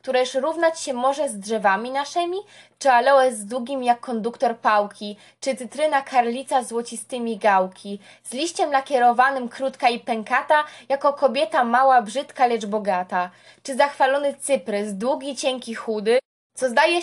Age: 20-39